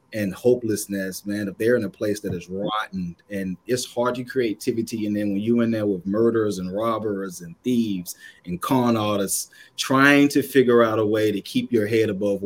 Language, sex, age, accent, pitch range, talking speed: English, male, 30-49, American, 100-110 Hz, 205 wpm